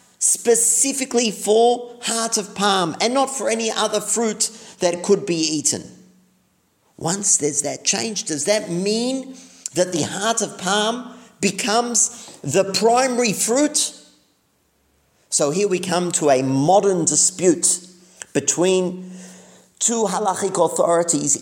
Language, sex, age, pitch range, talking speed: English, male, 50-69, 150-230 Hz, 120 wpm